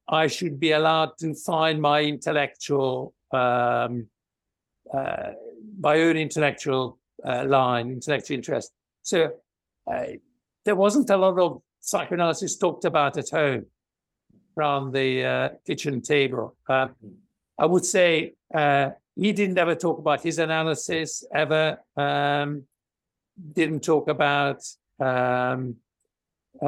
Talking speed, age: 115 wpm, 60-79